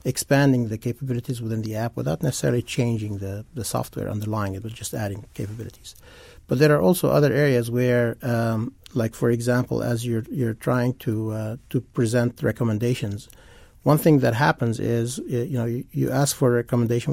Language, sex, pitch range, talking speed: English, male, 110-125 Hz, 180 wpm